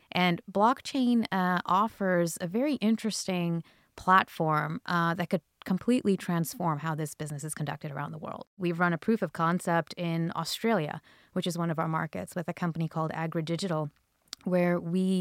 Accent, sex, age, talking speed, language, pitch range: American, female, 20-39, 165 wpm, English, 160-185 Hz